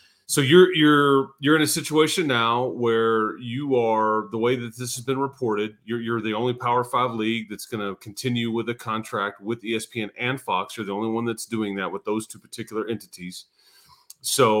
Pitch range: 105-125 Hz